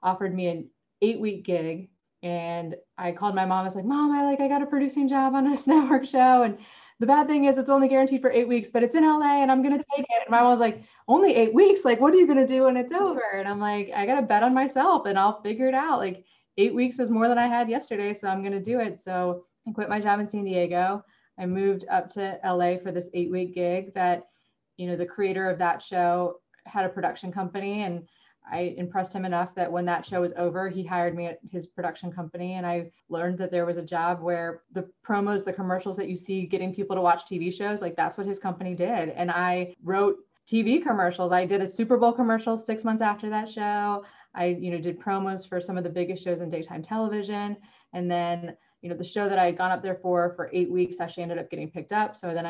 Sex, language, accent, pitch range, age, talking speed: female, English, American, 175-225 Hz, 20-39, 255 wpm